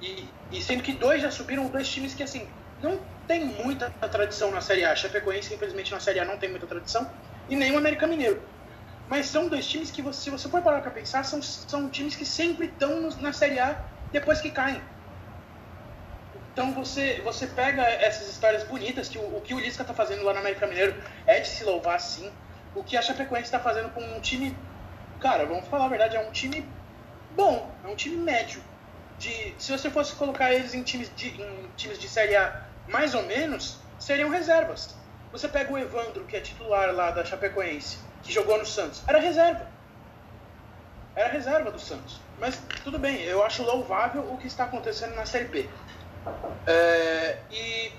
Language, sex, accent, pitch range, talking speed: Portuguese, male, Brazilian, 195-280 Hz, 195 wpm